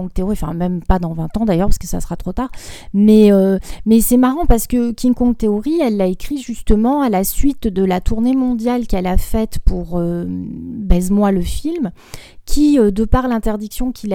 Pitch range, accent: 190-250 Hz, French